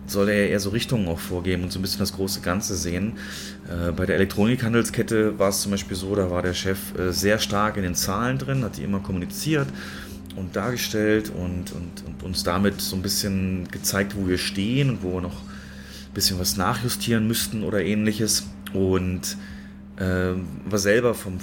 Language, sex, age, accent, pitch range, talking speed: German, male, 30-49, German, 95-105 Hz, 190 wpm